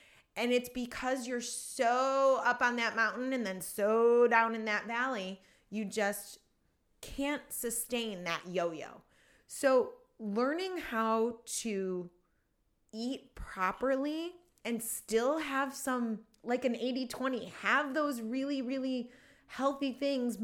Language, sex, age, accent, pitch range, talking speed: English, female, 30-49, American, 200-270 Hz, 125 wpm